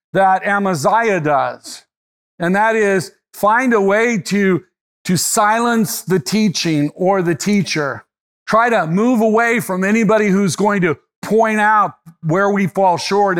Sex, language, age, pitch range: male, English, 50-69, 160-200 Hz